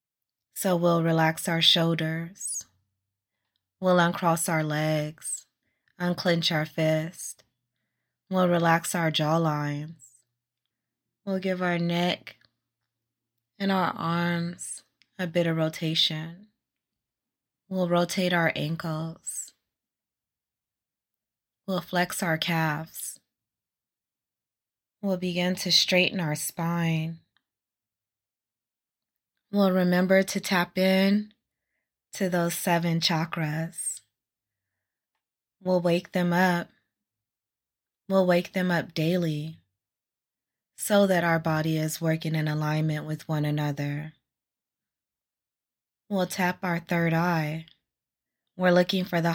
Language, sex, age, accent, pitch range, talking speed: English, female, 20-39, American, 125-175 Hz, 95 wpm